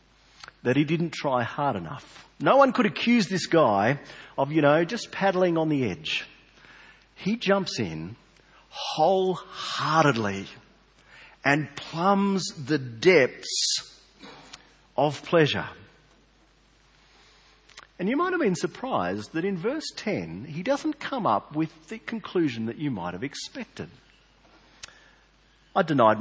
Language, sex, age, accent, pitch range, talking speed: English, male, 40-59, Australian, 140-220 Hz, 125 wpm